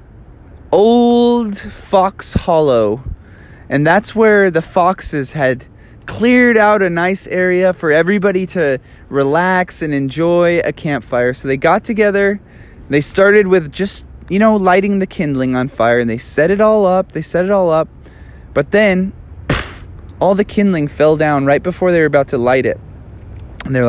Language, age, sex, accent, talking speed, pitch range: English, 20-39, male, American, 165 wpm, 140-200 Hz